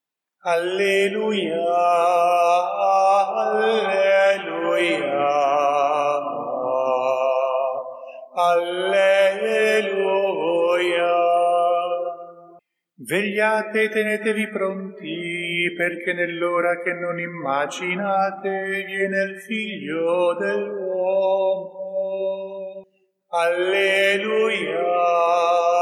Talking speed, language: 40 wpm, Italian